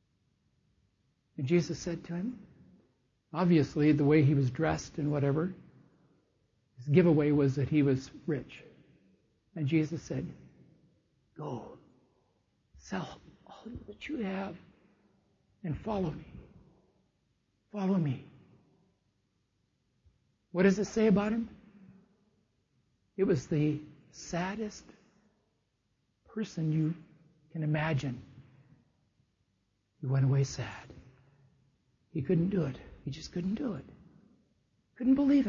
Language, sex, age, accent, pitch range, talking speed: English, male, 60-79, American, 125-175 Hz, 105 wpm